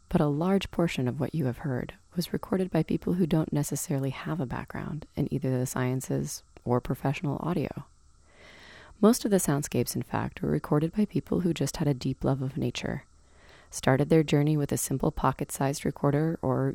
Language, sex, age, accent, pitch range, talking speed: English, female, 30-49, American, 120-155 Hz, 190 wpm